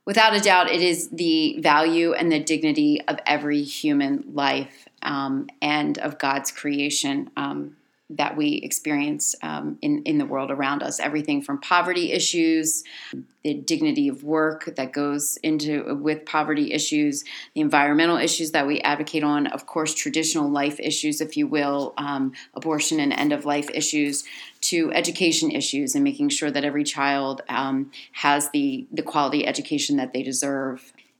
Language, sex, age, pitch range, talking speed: English, female, 30-49, 145-175 Hz, 160 wpm